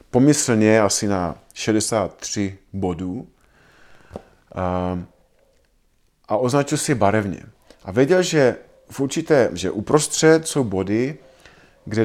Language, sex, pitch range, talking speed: Czech, male, 100-135 Hz, 100 wpm